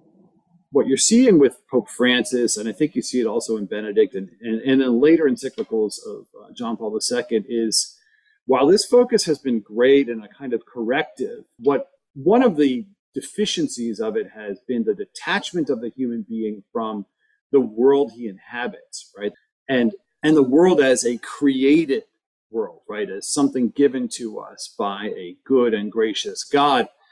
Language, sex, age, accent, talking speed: English, male, 40-59, American, 175 wpm